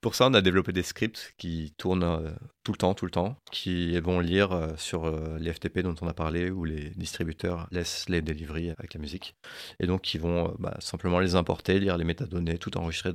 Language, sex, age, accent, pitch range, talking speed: French, male, 30-49, French, 85-100 Hz, 235 wpm